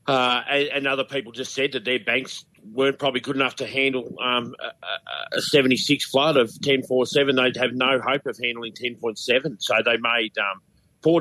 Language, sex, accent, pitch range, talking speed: English, male, Australian, 105-135 Hz, 180 wpm